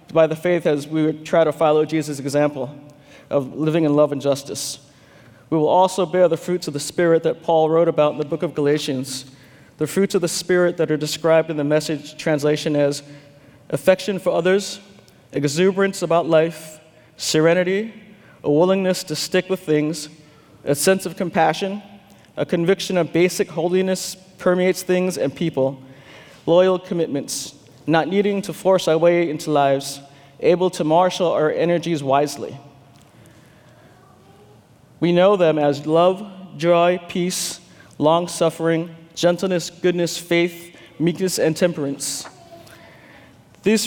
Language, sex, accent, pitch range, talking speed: English, male, American, 145-180 Hz, 145 wpm